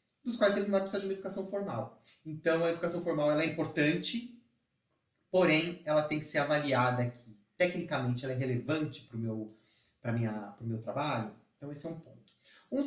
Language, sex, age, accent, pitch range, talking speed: Portuguese, male, 30-49, Brazilian, 135-180 Hz, 175 wpm